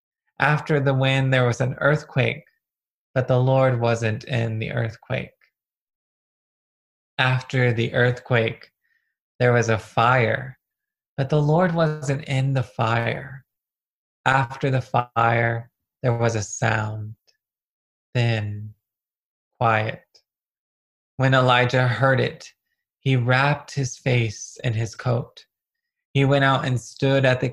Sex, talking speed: male, 120 wpm